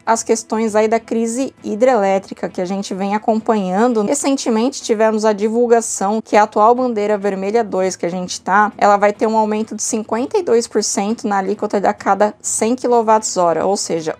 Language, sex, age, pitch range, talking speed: Portuguese, female, 20-39, 200-235 Hz, 170 wpm